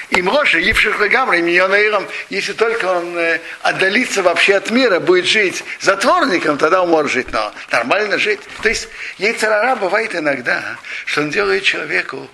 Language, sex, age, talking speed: Russian, male, 60-79, 155 wpm